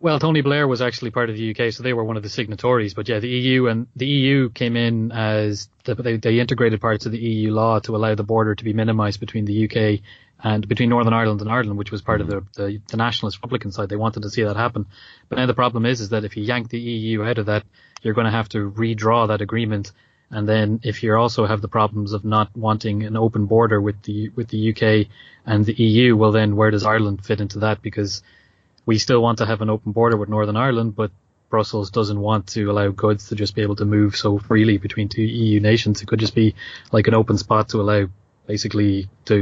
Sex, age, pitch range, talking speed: male, 20-39, 105-115 Hz, 250 wpm